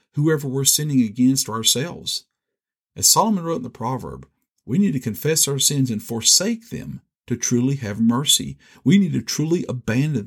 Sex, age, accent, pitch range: male, 50-69, American, 115-155 Hz